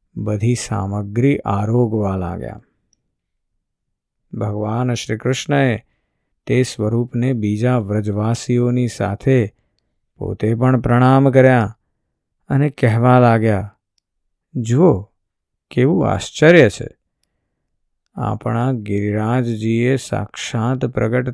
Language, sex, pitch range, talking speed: Gujarati, male, 105-130 Hz, 60 wpm